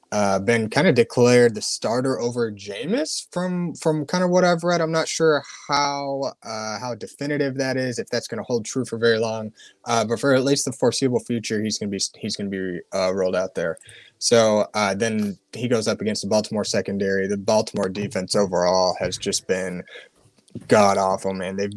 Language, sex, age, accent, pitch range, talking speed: English, male, 20-39, American, 95-120 Hz, 200 wpm